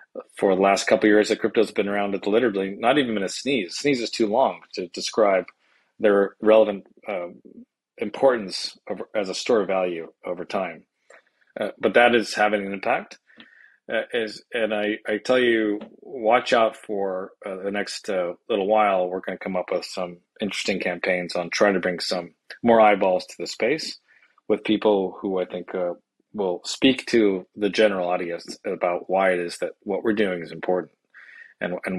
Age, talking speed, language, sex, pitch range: 30-49, 190 wpm, English, male, 90-105 Hz